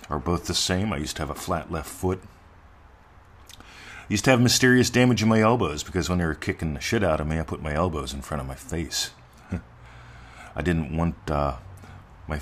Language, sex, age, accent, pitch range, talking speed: English, male, 40-59, American, 80-105 Hz, 220 wpm